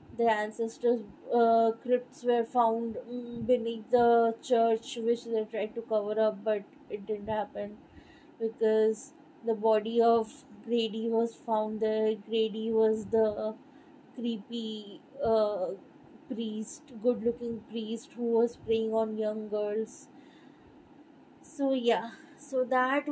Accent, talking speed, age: Indian, 115 wpm, 20-39